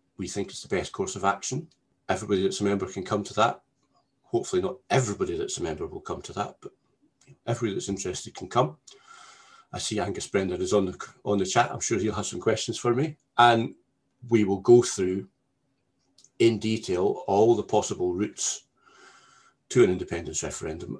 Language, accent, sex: English, British, male